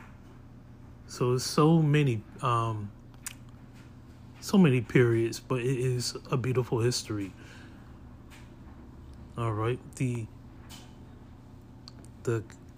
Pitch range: 115-130 Hz